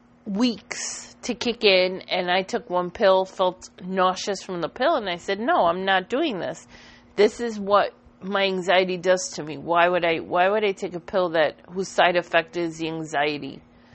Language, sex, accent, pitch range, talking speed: English, female, American, 165-205 Hz, 200 wpm